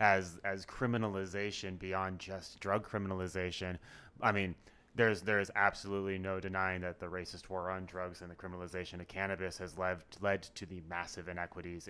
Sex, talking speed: male, 165 wpm